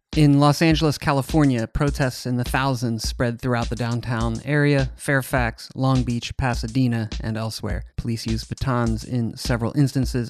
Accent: American